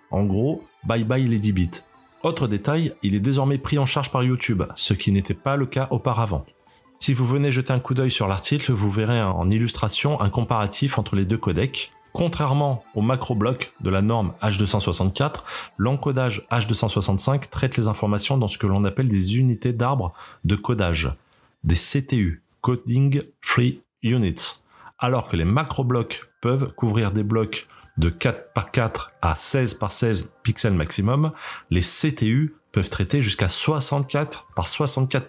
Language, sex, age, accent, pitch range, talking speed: French, male, 30-49, French, 105-140 Hz, 160 wpm